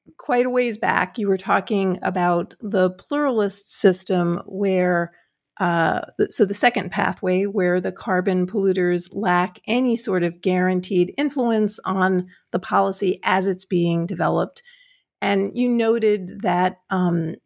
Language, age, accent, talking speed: English, 50-69, American, 135 wpm